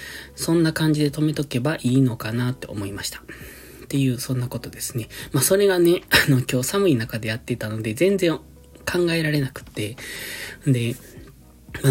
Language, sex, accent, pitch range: Japanese, male, native, 115-145 Hz